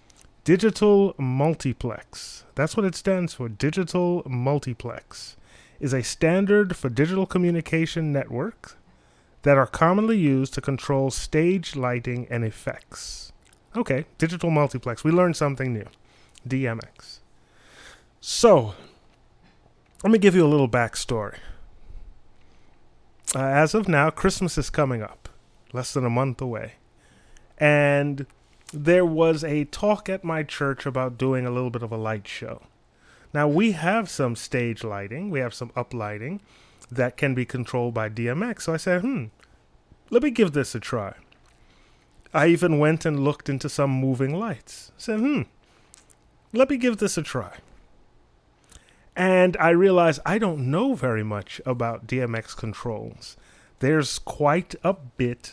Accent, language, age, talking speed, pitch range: American, English, 30-49, 145 wpm, 120-175 Hz